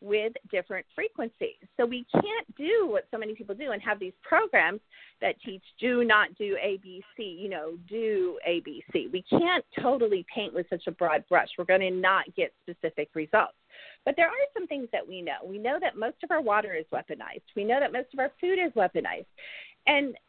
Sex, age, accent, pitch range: female, 40-59, American, 185-300 Hz